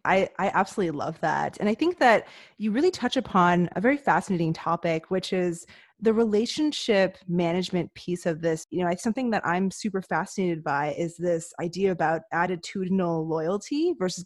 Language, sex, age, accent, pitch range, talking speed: English, female, 20-39, American, 170-220 Hz, 170 wpm